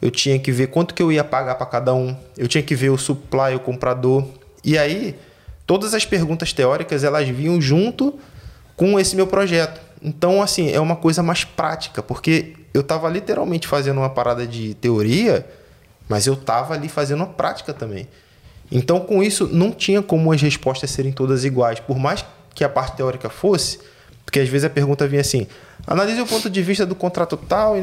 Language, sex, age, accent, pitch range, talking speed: Portuguese, male, 20-39, Brazilian, 130-180 Hz, 195 wpm